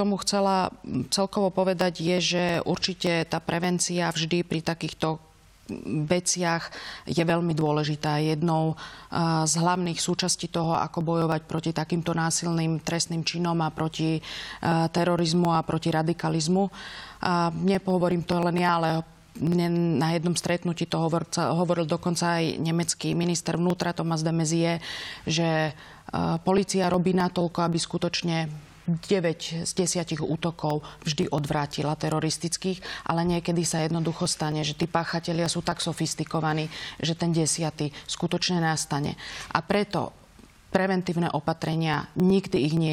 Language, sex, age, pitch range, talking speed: Slovak, female, 30-49, 160-175 Hz, 125 wpm